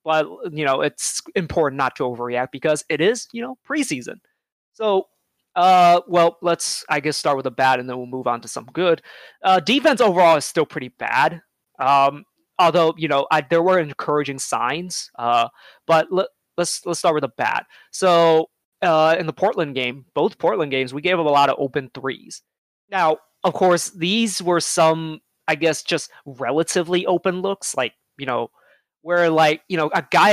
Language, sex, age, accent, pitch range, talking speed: English, male, 20-39, American, 140-185 Hz, 190 wpm